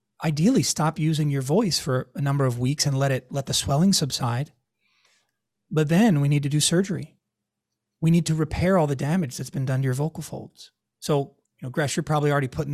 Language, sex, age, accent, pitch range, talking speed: English, male, 30-49, American, 130-165 Hz, 215 wpm